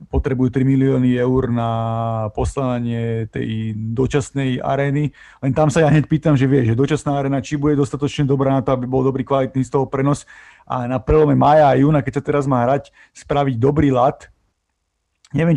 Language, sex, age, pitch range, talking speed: Slovak, male, 30-49, 125-145 Hz, 185 wpm